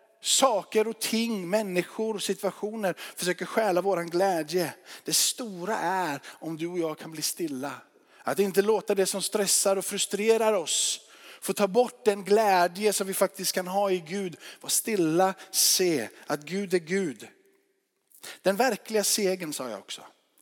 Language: Swedish